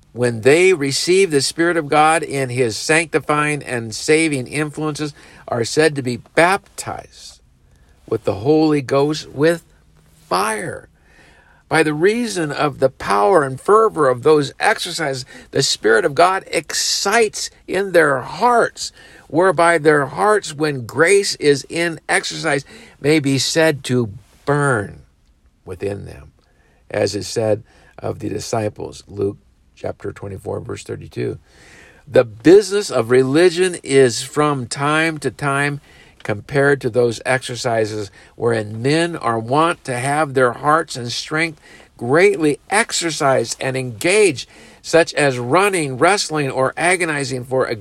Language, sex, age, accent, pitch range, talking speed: English, male, 50-69, American, 120-160 Hz, 130 wpm